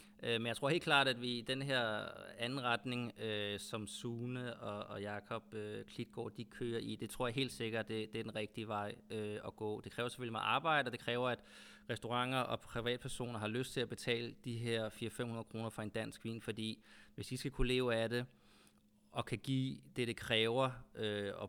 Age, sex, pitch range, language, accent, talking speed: 20-39, male, 110-125 Hz, Danish, native, 215 wpm